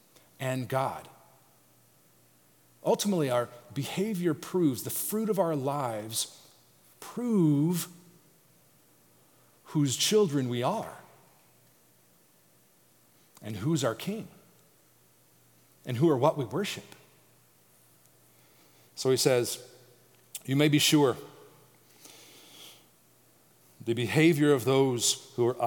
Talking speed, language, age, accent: 90 wpm, English, 40-59, American